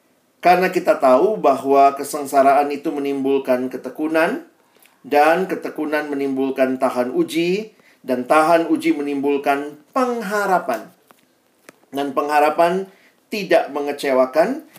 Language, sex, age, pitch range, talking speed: Indonesian, male, 40-59, 140-195 Hz, 90 wpm